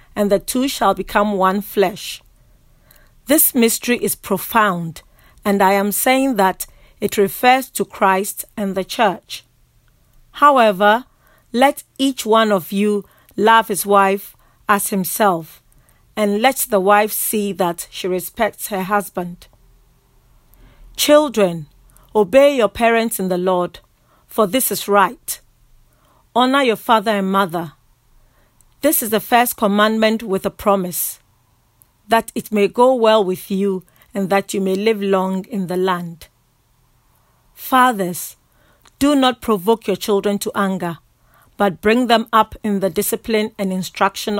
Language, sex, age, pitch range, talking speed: English, female, 40-59, 190-225 Hz, 135 wpm